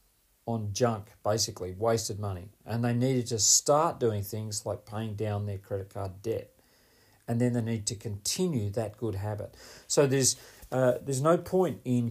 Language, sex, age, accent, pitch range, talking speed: English, male, 40-59, Australian, 110-130 Hz, 175 wpm